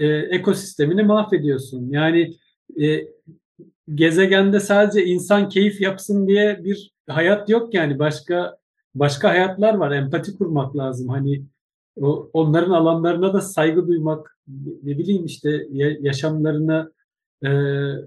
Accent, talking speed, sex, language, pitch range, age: native, 110 wpm, male, Turkish, 155-195 Hz, 50-69